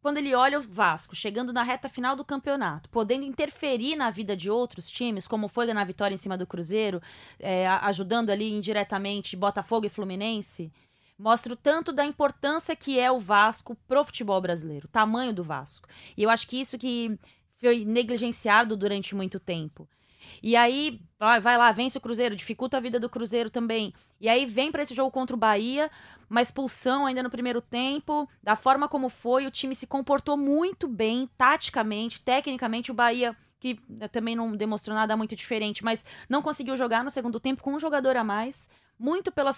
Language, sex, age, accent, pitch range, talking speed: Portuguese, female, 20-39, Brazilian, 215-265 Hz, 185 wpm